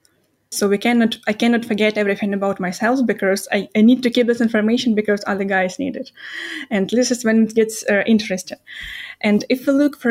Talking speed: 210 wpm